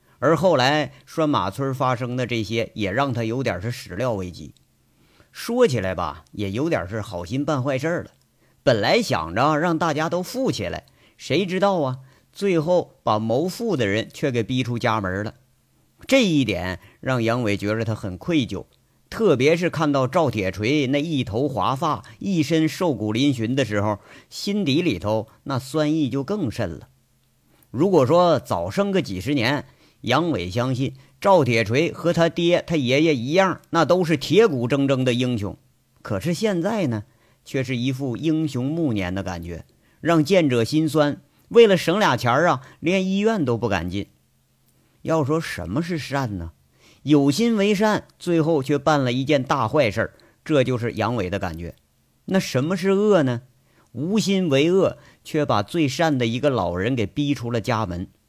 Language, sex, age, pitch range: Chinese, male, 50-69, 115-160 Hz